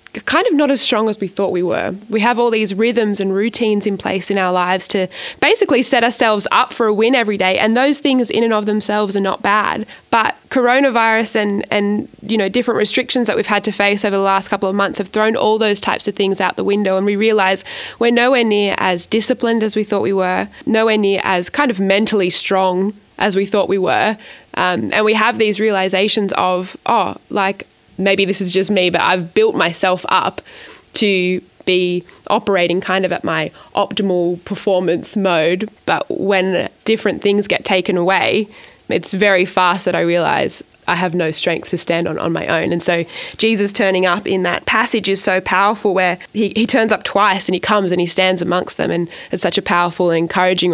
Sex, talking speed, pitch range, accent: female, 215 wpm, 185-215 Hz, Australian